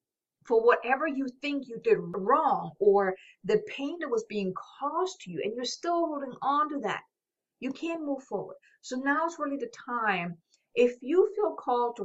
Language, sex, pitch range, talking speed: English, female, 205-280 Hz, 190 wpm